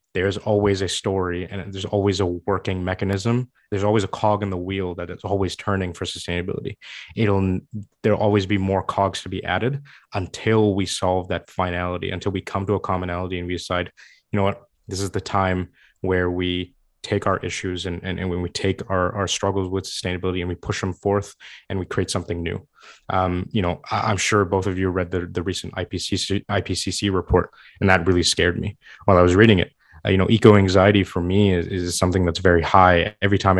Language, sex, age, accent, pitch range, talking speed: English, male, 20-39, American, 90-100 Hz, 215 wpm